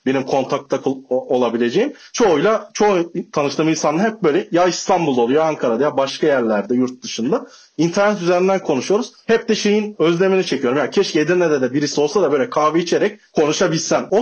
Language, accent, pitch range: Turkish, native, 135-190 Hz